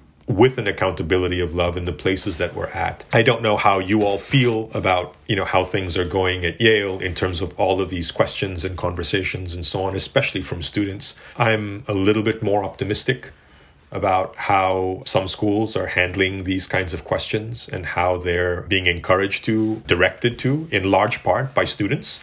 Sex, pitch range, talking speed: male, 90-105 Hz, 190 wpm